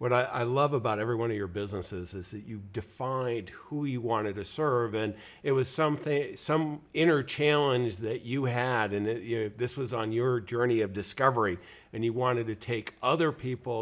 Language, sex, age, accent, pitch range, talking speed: English, male, 50-69, American, 105-125 Hz, 200 wpm